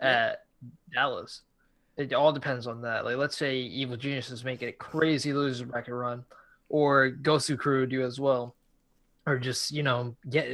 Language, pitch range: English, 125-150 Hz